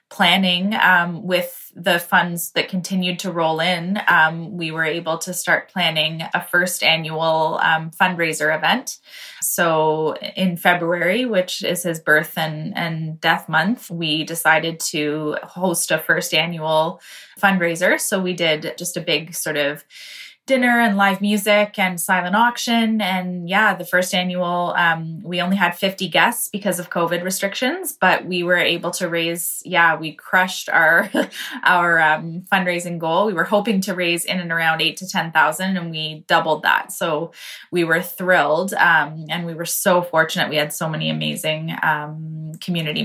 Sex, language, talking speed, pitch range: female, English, 165 wpm, 165-190 Hz